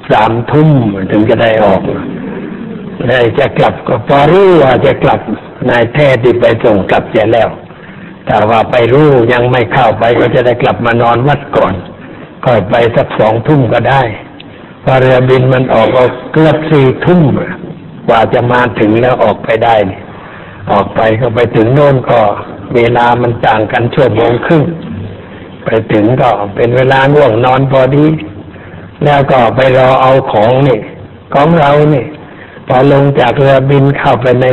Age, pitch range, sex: 60-79, 115-135 Hz, male